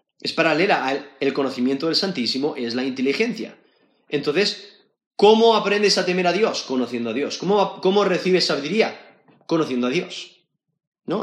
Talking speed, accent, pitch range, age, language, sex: 150 wpm, Spanish, 140-210 Hz, 30-49, Spanish, male